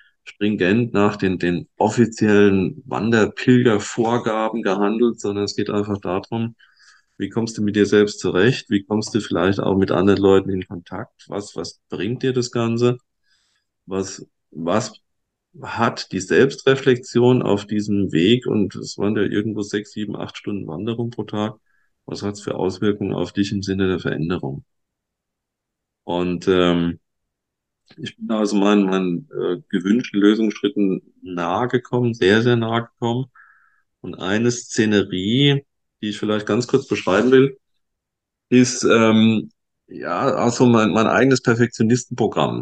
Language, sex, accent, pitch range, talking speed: German, male, German, 95-115 Hz, 140 wpm